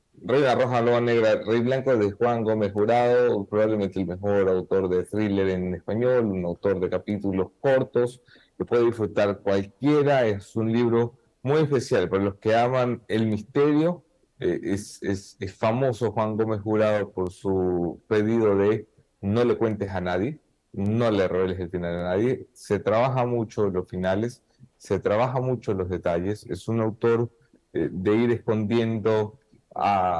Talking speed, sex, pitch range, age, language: 165 wpm, male, 95-120 Hz, 30-49, English